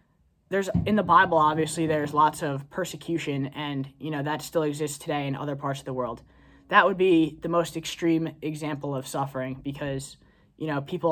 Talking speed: 190 wpm